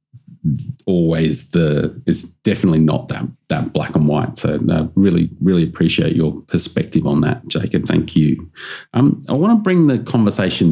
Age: 30-49